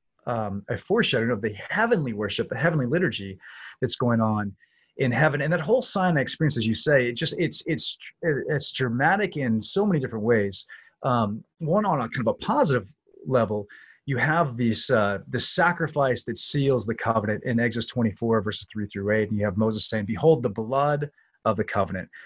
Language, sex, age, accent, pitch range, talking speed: English, male, 30-49, American, 115-150 Hz, 190 wpm